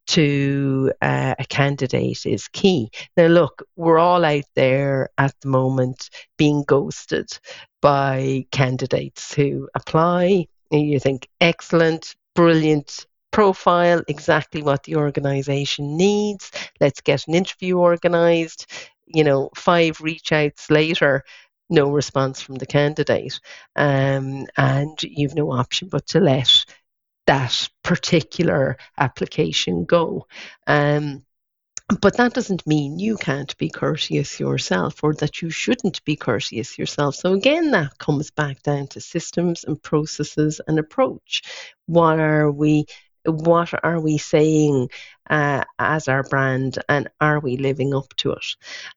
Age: 50-69